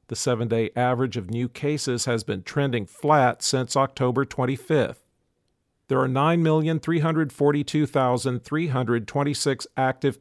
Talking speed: 100 wpm